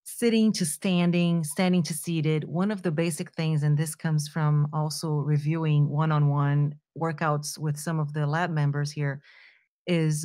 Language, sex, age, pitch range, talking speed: English, female, 40-59, 150-185 Hz, 165 wpm